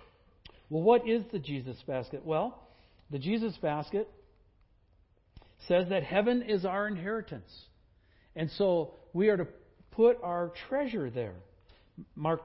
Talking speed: 125 wpm